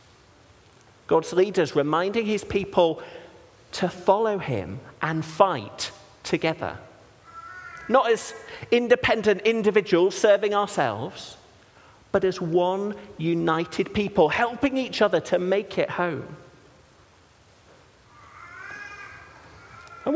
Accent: British